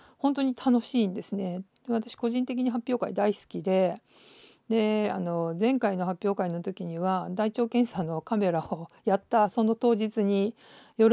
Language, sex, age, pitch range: Japanese, female, 50-69, 185-235 Hz